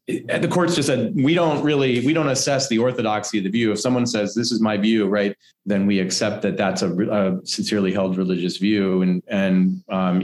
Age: 30-49